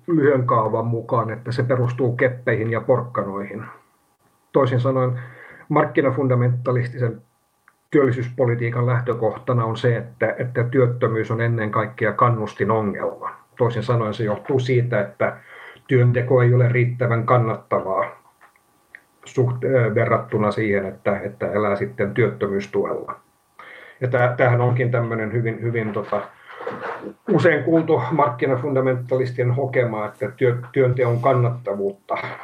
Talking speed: 105 wpm